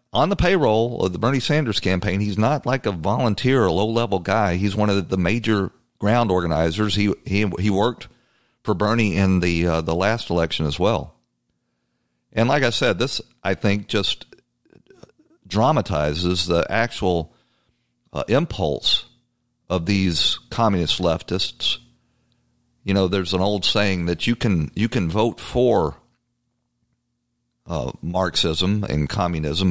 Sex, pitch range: male, 80-110 Hz